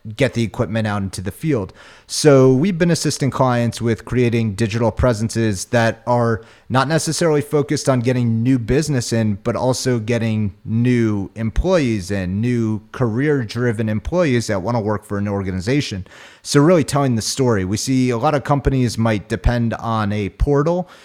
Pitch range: 105-130 Hz